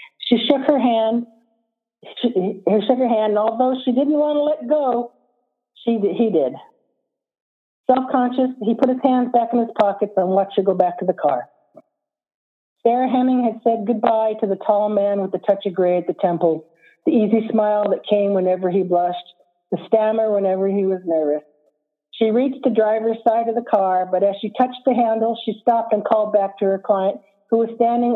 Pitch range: 200-250 Hz